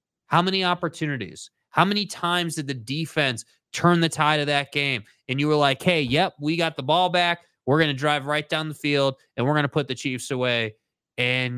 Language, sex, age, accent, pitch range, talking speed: English, male, 30-49, American, 125-160 Hz, 225 wpm